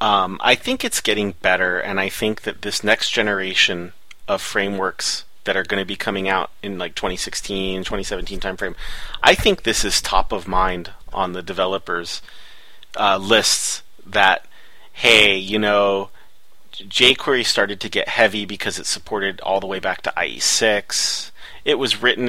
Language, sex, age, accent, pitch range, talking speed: English, male, 30-49, American, 95-120 Hz, 160 wpm